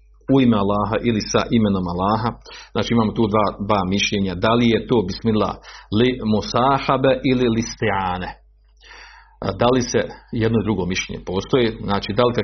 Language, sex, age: Croatian, male, 50-69